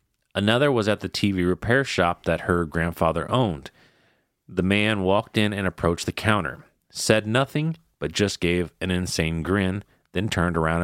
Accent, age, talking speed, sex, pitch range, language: American, 30-49, 165 wpm, male, 85-105 Hz, English